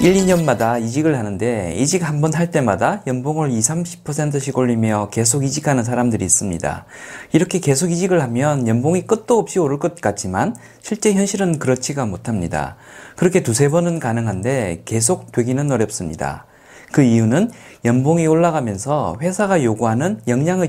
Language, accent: Korean, native